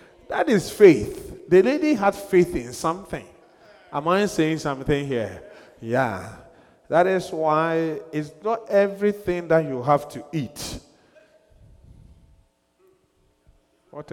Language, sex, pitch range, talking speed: English, male, 140-205 Hz, 115 wpm